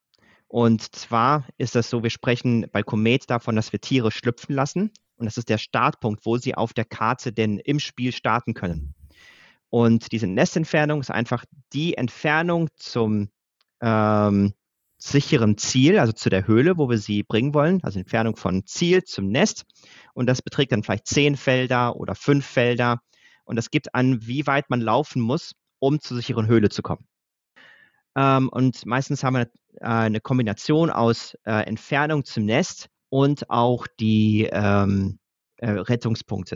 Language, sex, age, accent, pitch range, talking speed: German, male, 30-49, German, 110-135 Hz, 155 wpm